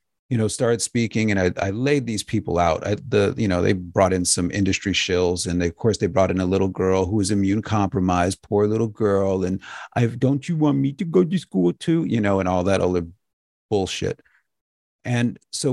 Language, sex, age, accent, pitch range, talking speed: English, male, 40-59, American, 95-125 Hz, 225 wpm